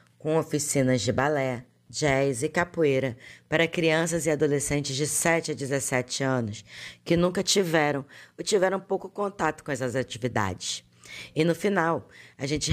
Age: 20-39